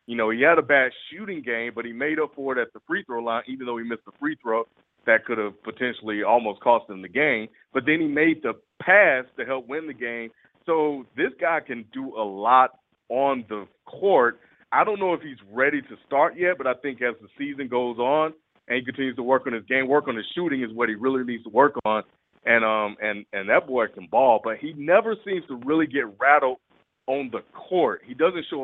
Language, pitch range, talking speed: English, 115-140 Hz, 235 wpm